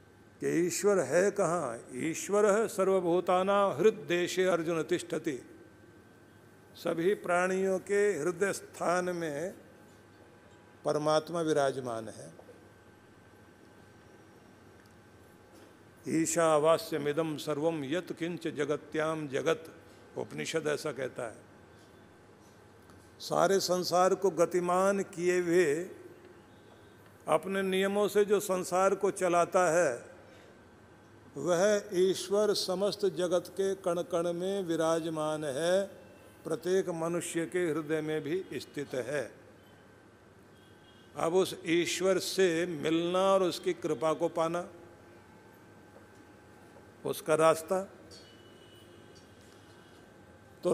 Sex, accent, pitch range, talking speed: male, native, 135-185 Hz, 85 wpm